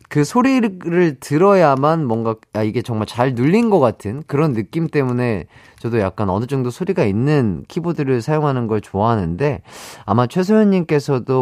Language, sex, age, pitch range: Korean, male, 30-49, 105-175 Hz